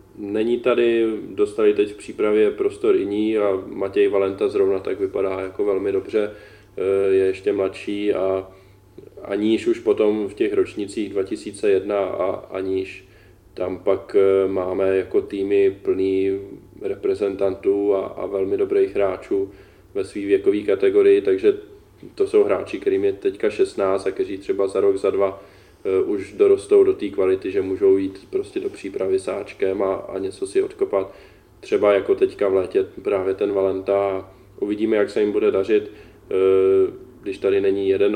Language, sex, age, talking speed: Czech, male, 20-39, 155 wpm